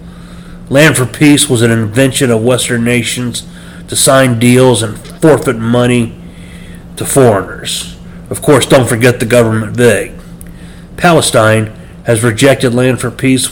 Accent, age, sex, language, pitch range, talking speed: American, 40-59, male, English, 120-155 Hz, 135 wpm